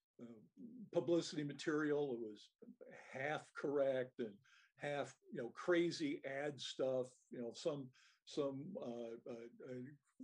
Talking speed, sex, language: 105 wpm, male, English